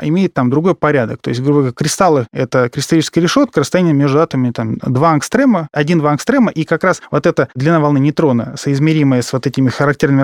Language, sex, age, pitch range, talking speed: Russian, male, 20-39, 140-175 Hz, 195 wpm